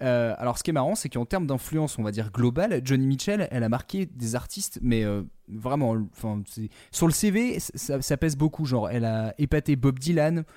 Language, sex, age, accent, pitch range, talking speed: French, male, 20-39, French, 120-165 Hz, 225 wpm